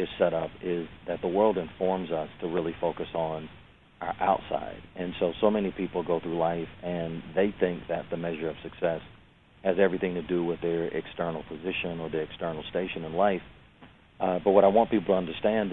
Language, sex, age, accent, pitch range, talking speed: English, male, 40-59, American, 85-95 Hz, 200 wpm